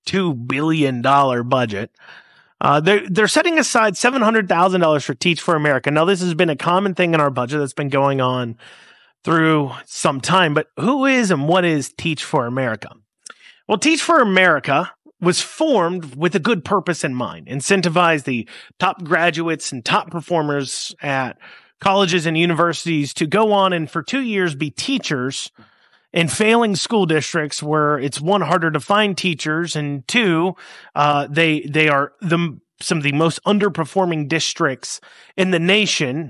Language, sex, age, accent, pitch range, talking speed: English, male, 30-49, American, 145-185 Hz, 160 wpm